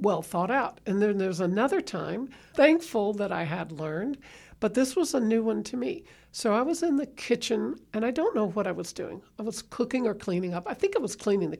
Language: English